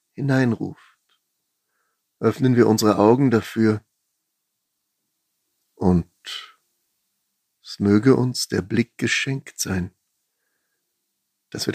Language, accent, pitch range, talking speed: German, German, 100-125 Hz, 80 wpm